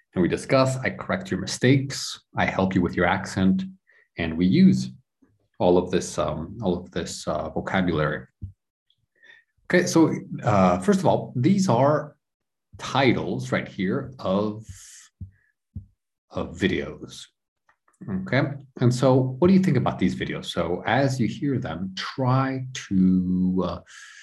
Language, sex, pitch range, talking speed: English, male, 90-130 Hz, 140 wpm